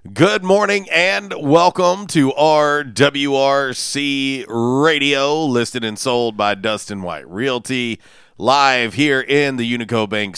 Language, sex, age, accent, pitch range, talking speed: English, male, 40-59, American, 105-135 Hz, 115 wpm